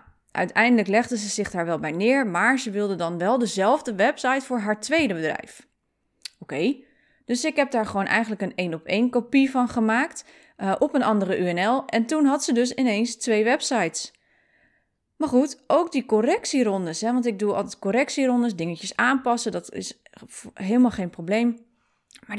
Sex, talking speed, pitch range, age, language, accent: female, 170 wpm, 200-255 Hz, 20-39, Dutch, Dutch